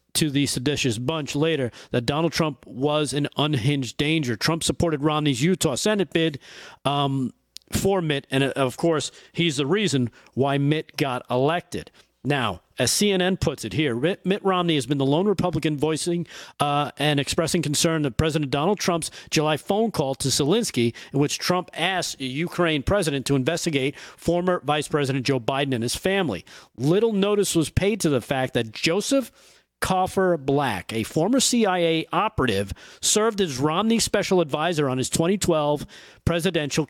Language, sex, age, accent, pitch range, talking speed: English, male, 40-59, American, 140-175 Hz, 160 wpm